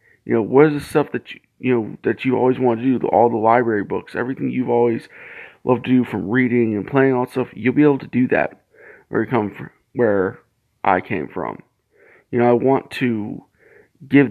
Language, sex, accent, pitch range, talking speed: English, male, American, 115-145 Hz, 225 wpm